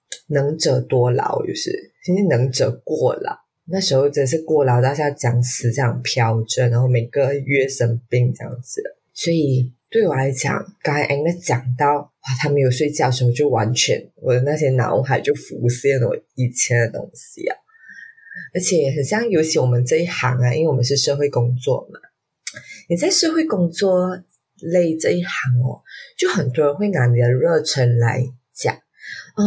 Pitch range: 125-180 Hz